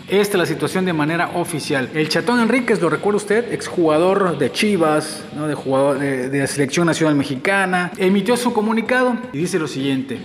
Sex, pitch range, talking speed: male, 155-210 Hz, 180 wpm